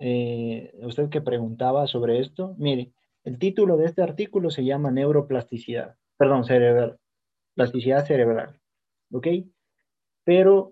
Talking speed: 120 wpm